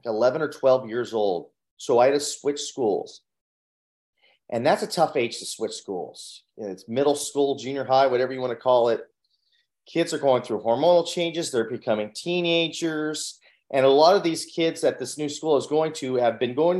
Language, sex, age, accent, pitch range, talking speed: English, male, 30-49, American, 125-165 Hz, 195 wpm